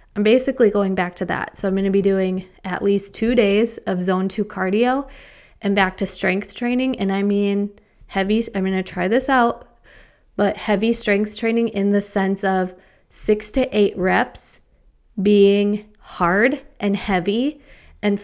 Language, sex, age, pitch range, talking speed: English, female, 20-39, 185-215 Hz, 170 wpm